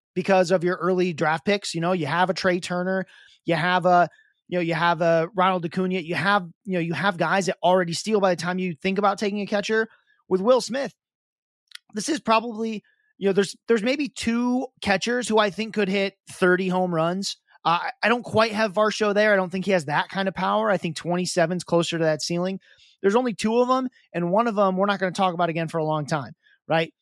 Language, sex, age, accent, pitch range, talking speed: English, male, 30-49, American, 170-210 Hz, 240 wpm